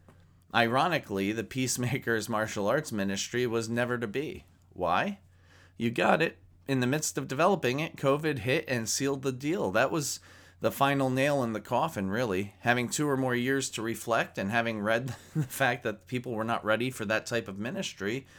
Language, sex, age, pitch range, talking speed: English, male, 30-49, 90-130 Hz, 185 wpm